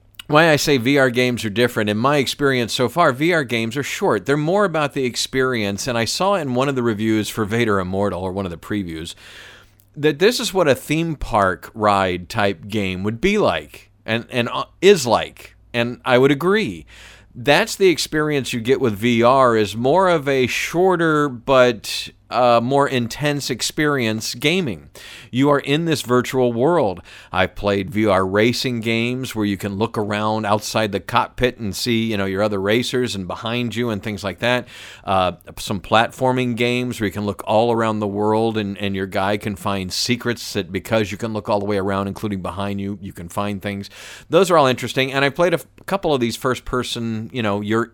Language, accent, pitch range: English, American, 100-130 Hz